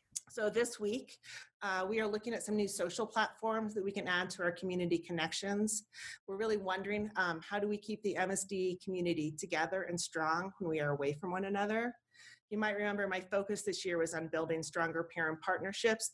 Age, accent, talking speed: 40-59, American, 200 wpm